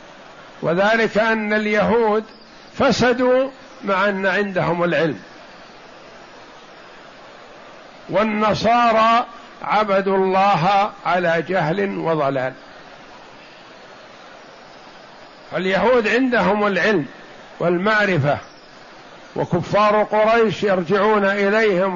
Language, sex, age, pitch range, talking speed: Arabic, male, 60-79, 190-220 Hz, 60 wpm